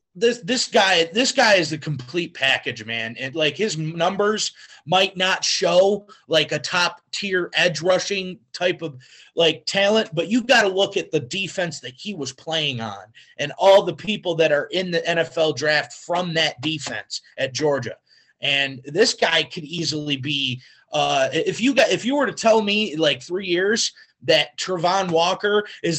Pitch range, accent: 155-210 Hz, American